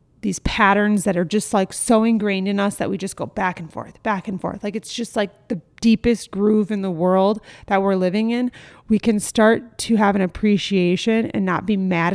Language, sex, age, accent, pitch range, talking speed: English, female, 30-49, American, 175-210 Hz, 220 wpm